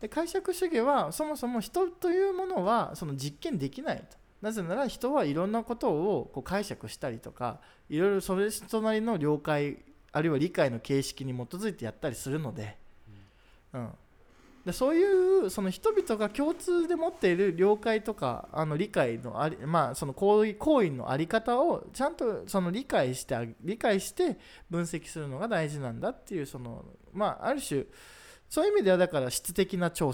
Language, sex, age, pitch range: Japanese, male, 20-39, 145-225 Hz